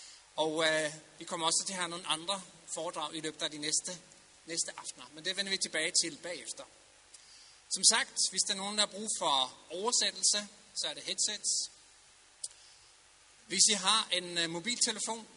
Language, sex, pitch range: Danish, male, 160-200 Hz